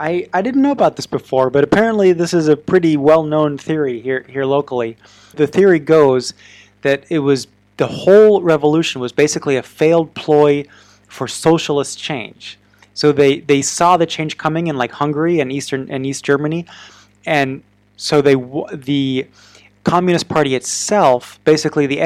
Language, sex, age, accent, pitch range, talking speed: English, male, 30-49, American, 125-155 Hz, 160 wpm